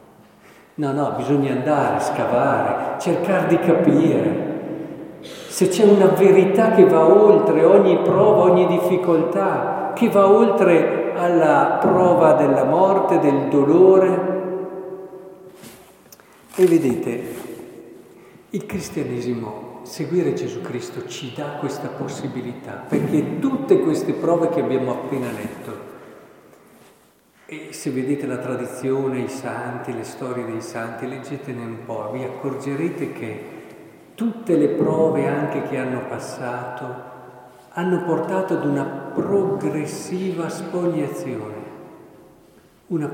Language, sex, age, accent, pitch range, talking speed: Italian, male, 50-69, native, 140-195 Hz, 110 wpm